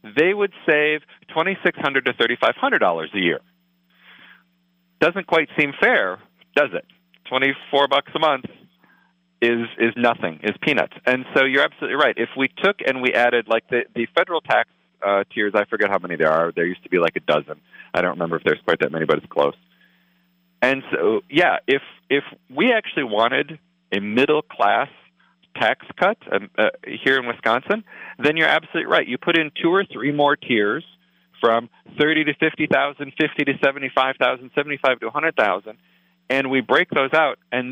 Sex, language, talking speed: male, English, 175 wpm